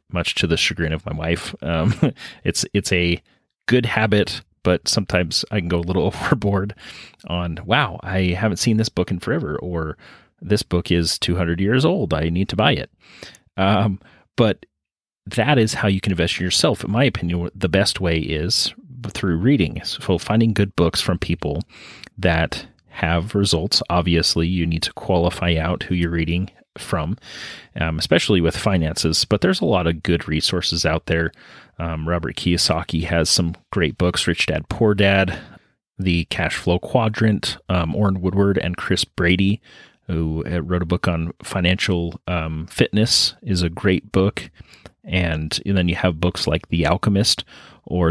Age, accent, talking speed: 30-49, American, 170 wpm